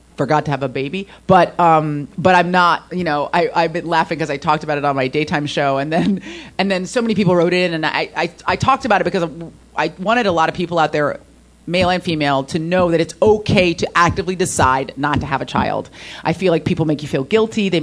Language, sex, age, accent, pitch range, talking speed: English, female, 30-49, American, 135-170 Hz, 250 wpm